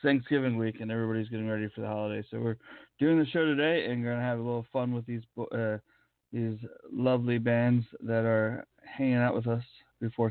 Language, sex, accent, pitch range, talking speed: English, male, American, 110-125 Hz, 200 wpm